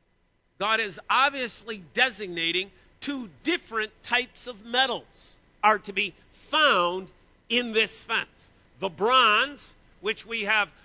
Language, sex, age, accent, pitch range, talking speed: English, male, 50-69, American, 190-245 Hz, 115 wpm